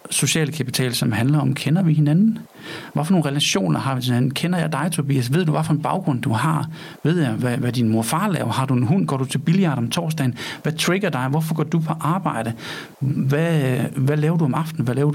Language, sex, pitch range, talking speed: Danish, male, 135-160 Hz, 240 wpm